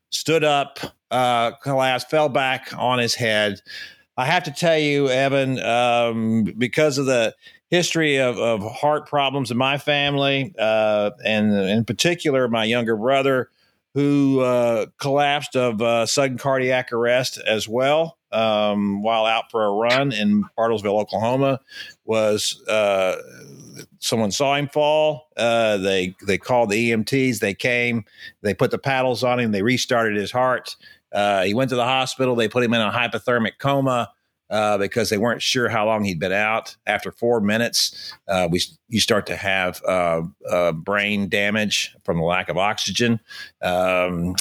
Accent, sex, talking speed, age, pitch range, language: American, male, 160 wpm, 50-69, 105-130 Hz, English